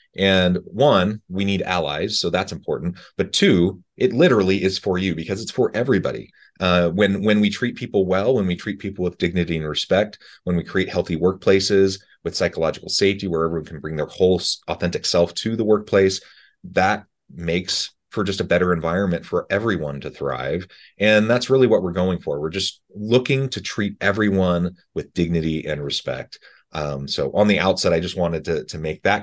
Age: 30-49